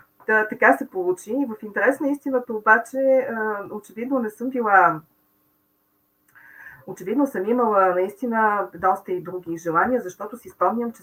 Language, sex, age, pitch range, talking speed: Bulgarian, female, 40-59, 160-205 Hz, 135 wpm